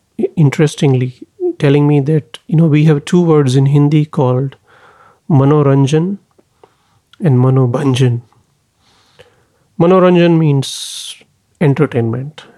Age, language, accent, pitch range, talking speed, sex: 30-49, English, Indian, 135-165 Hz, 90 wpm, male